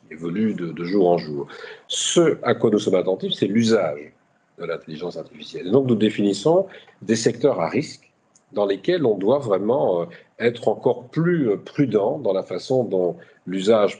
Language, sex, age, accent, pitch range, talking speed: French, male, 50-69, French, 100-155 Hz, 165 wpm